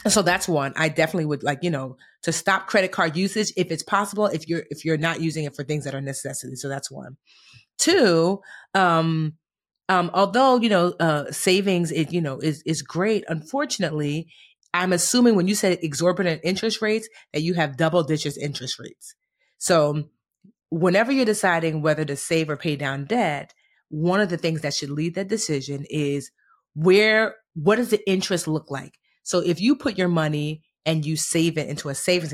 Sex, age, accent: female, 30-49, American